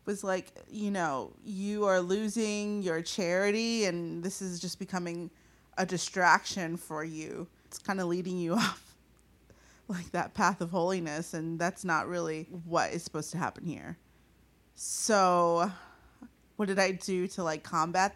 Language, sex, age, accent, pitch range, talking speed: English, female, 30-49, American, 170-190 Hz, 155 wpm